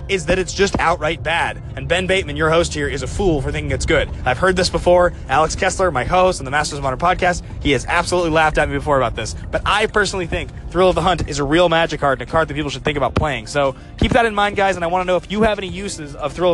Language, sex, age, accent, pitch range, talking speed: English, male, 20-39, American, 140-185 Hz, 300 wpm